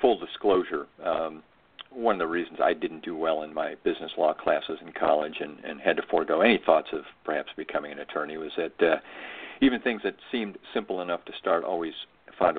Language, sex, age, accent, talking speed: English, male, 50-69, American, 205 wpm